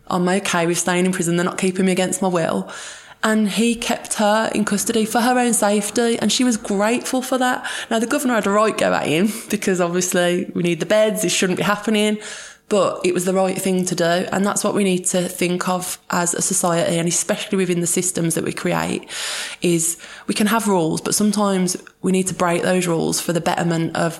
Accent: British